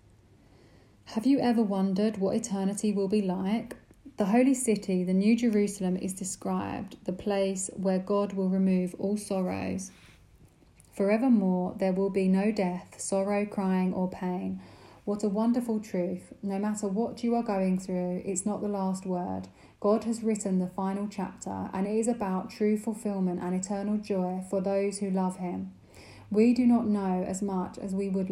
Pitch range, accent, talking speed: 185-210 Hz, British, 170 wpm